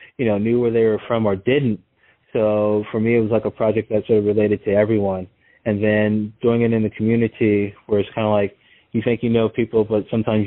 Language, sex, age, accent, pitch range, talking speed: English, male, 20-39, American, 105-120 Hz, 240 wpm